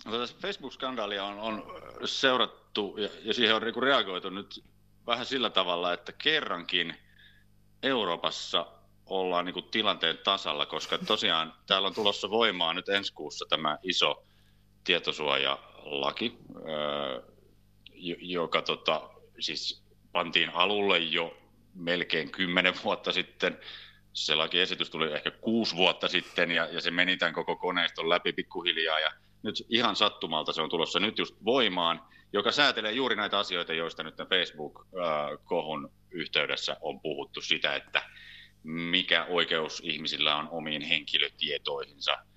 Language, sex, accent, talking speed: Finnish, male, native, 120 wpm